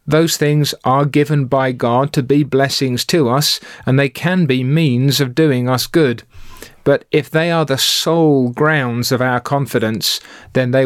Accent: British